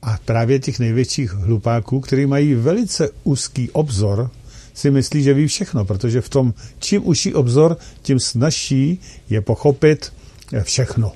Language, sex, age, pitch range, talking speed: Czech, male, 50-69, 110-145 Hz, 140 wpm